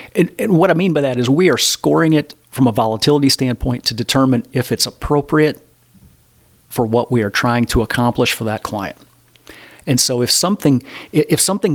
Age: 40-59